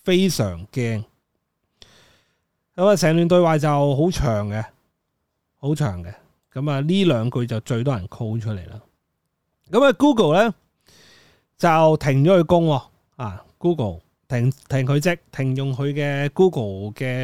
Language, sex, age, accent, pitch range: Chinese, male, 30-49, native, 105-155 Hz